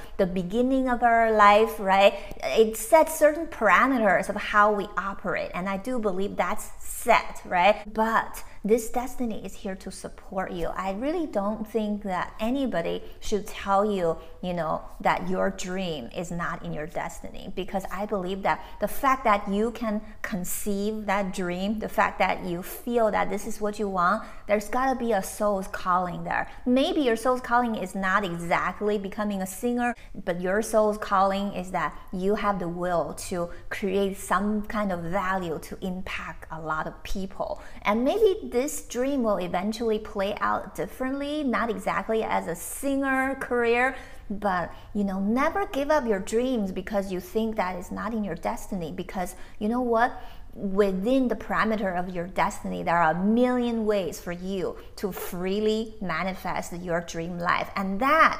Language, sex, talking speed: English, female, 170 wpm